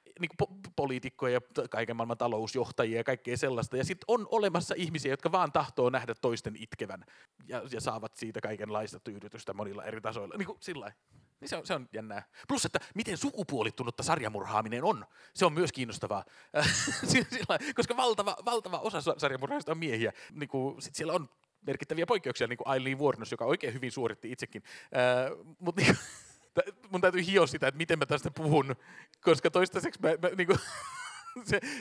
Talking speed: 170 wpm